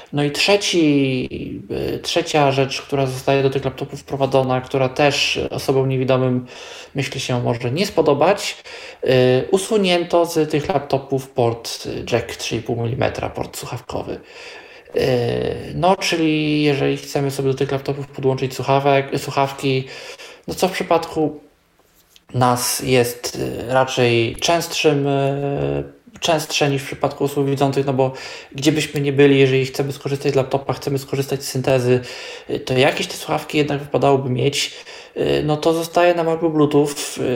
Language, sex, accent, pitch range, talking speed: Polish, male, native, 130-155 Hz, 130 wpm